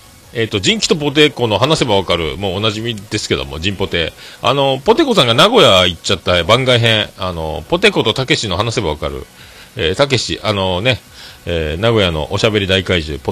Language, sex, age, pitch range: Japanese, male, 40-59, 80-110 Hz